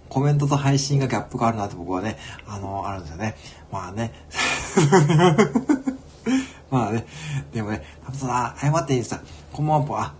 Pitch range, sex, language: 100-135 Hz, male, Japanese